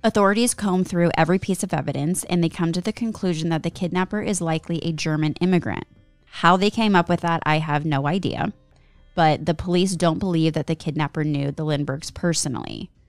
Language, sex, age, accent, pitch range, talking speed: English, female, 20-39, American, 145-180 Hz, 195 wpm